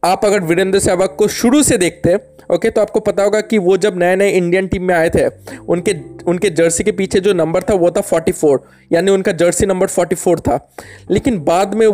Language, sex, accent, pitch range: Hindi, male, native, 175-210 Hz